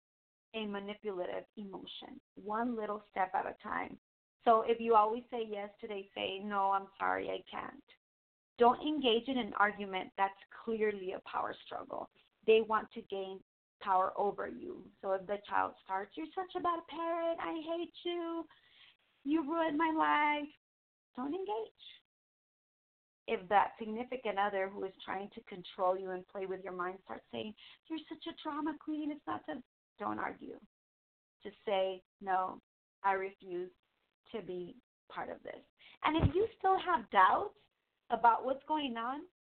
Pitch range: 195-275 Hz